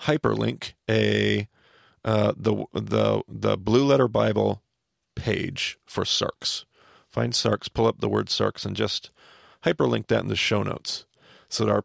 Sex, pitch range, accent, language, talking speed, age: male, 105-130 Hz, American, English, 150 wpm, 40-59